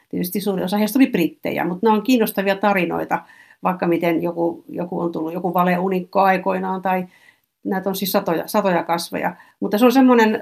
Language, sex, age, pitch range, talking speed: Finnish, female, 50-69, 185-220 Hz, 180 wpm